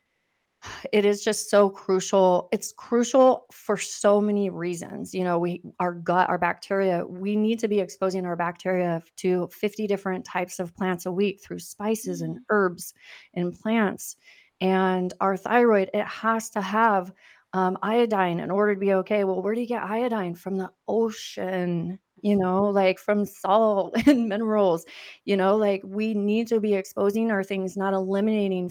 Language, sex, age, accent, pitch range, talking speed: English, female, 30-49, American, 175-205 Hz, 170 wpm